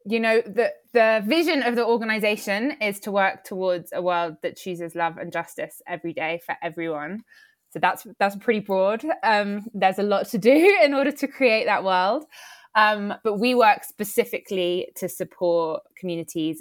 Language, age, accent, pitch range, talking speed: English, 20-39, British, 165-205 Hz, 175 wpm